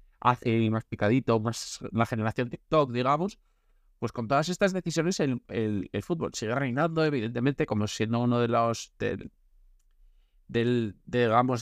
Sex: male